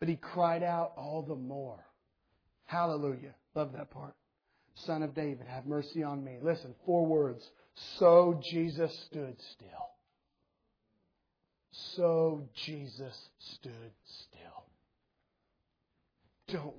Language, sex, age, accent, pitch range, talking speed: English, male, 40-59, American, 125-150 Hz, 105 wpm